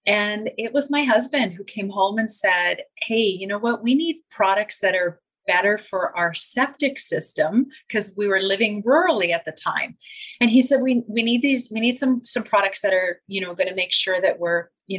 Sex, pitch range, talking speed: female, 190-270 Hz, 220 wpm